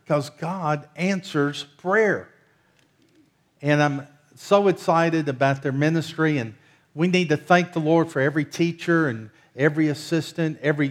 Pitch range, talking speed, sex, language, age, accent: 135-160 Hz, 140 wpm, male, English, 50-69, American